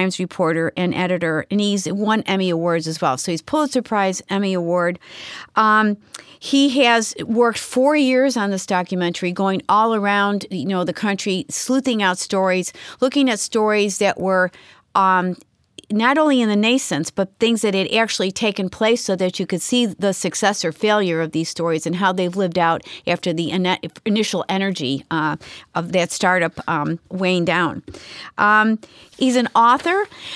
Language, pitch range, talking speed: English, 180-235 Hz, 165 wpm